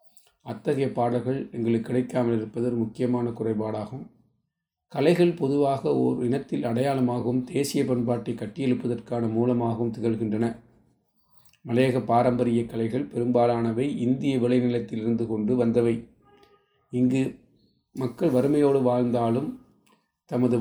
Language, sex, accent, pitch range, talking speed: Tamil, male, native, 115-130 Hz, 85 wpm